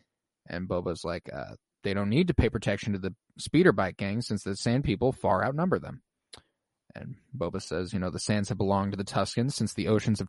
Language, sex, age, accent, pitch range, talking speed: English, male, 20-39, American, 105-140 Hz, 220 wpm